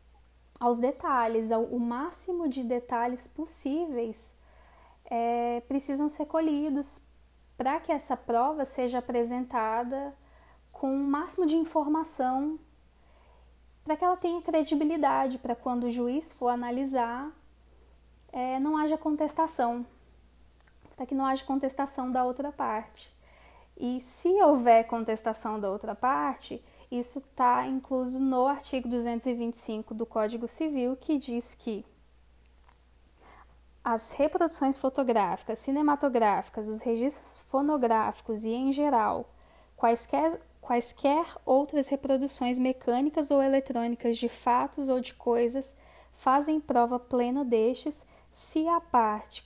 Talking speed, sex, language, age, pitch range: 115 wpm, female, Portuguese, 10-29, 235-280 Hz